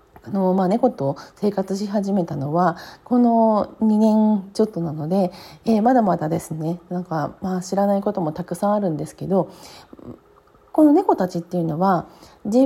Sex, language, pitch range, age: female, Japanese, 175-255 Hz, 40-59